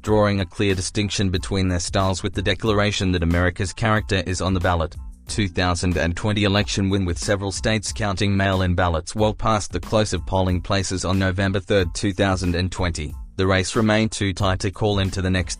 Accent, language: Australian, English